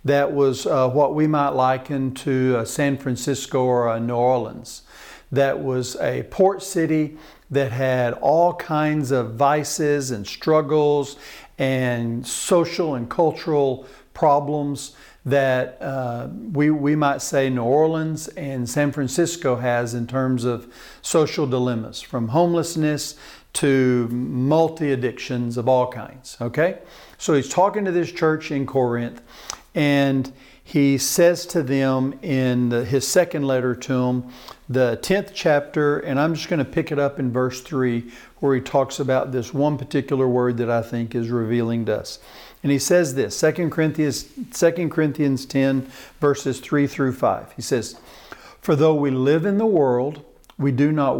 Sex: male